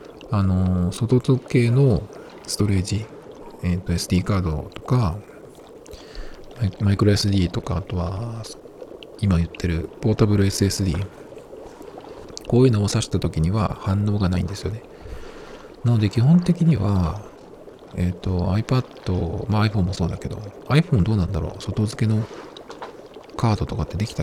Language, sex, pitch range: Japanese, male, 90-120 Hz